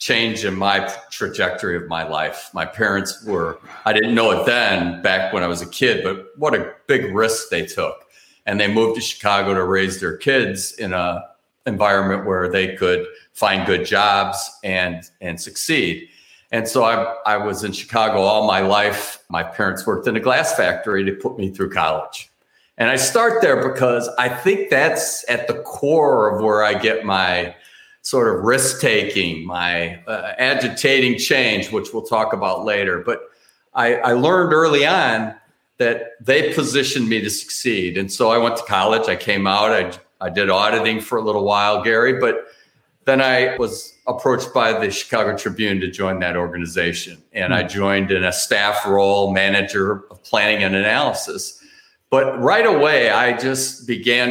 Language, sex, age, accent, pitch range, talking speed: English, male, 50-69, American, 95-115 Hz, 180 wpm